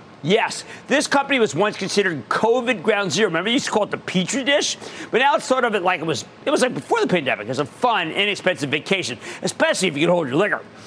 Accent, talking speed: American, 245 wpm